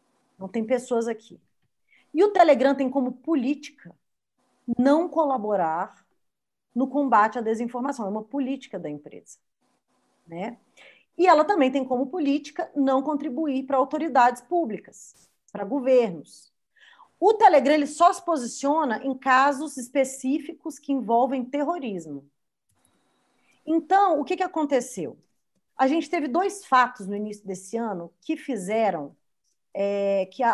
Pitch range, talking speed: 235-290 Hz, 125 wpm